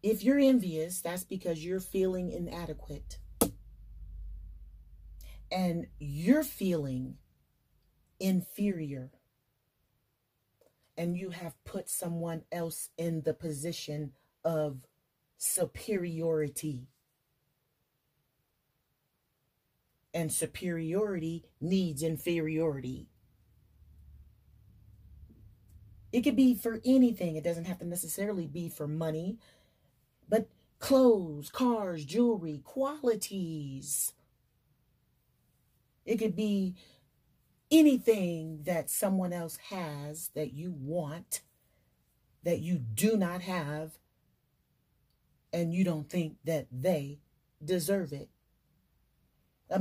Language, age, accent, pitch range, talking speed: English, 40-59, American, 140-190 Hz, 85 wpm